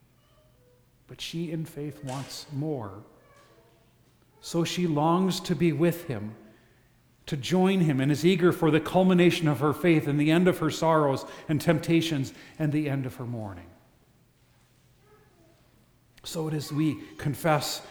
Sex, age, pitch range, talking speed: male, 40-59, 125-155 Hz, 145 wpm